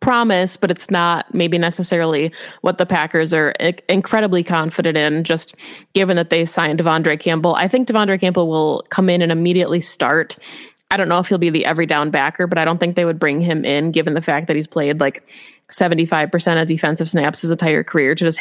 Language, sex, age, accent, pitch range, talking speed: English, female, 20-39, American, 165-190 Hz, 210 wpm